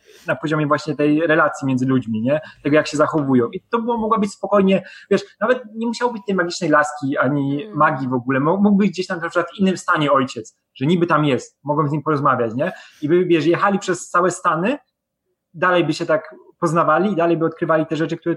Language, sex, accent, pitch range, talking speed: Polish, male, native, 150-200 Hz, 220 wpm